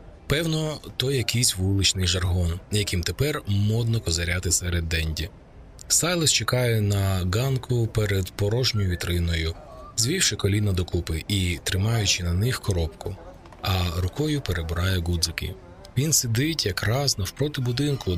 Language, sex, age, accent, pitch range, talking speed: Ukrainian, male, 20-39, native, 90-120 Hz, 115 wpm